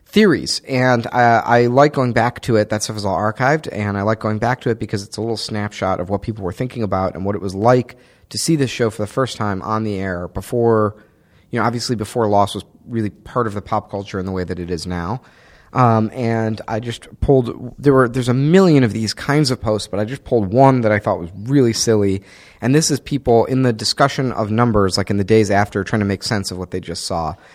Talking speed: 255 wpm